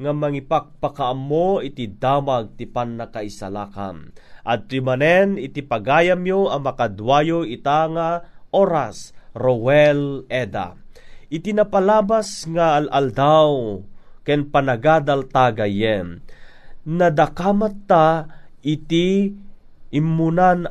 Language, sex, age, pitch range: Filipino, male, 30-49, 130-180 Hz